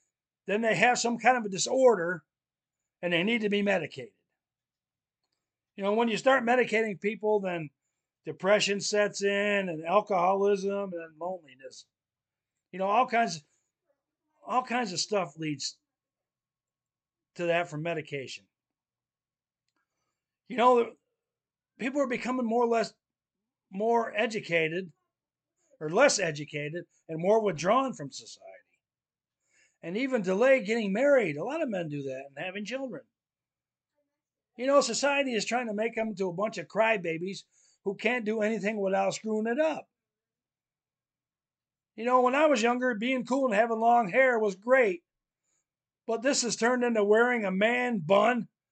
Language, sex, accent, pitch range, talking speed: English, male, American, 175-245 Hz, 145 wpm